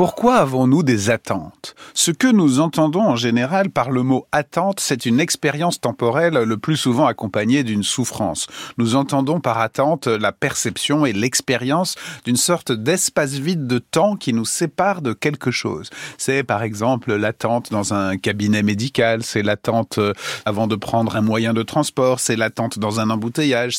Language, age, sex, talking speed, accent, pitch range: French, 40-59, male, 165 wpm, French, 120-165 Hz